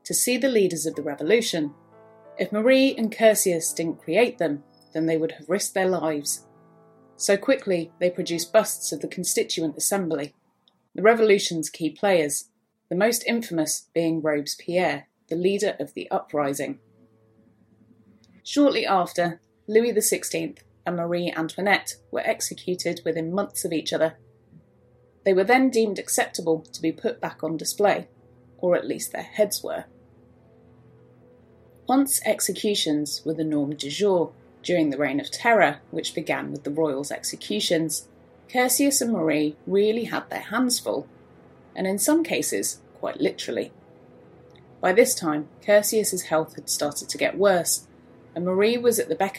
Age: 30-49